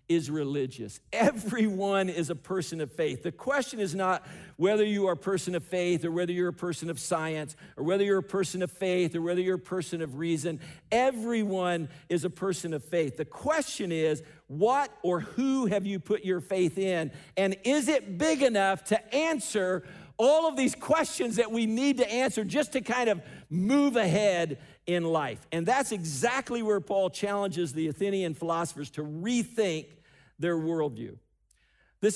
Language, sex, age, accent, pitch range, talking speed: English, male, 50-69, American, 145-200 Hz, 180 wpm